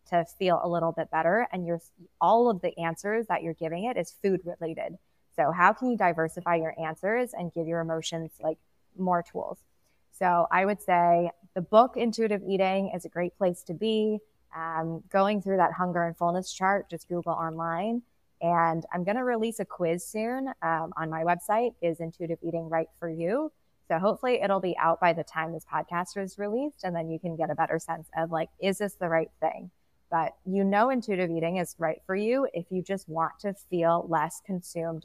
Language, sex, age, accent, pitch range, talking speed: English, female, 20-39, American, 165-195 Hz, 205 wpm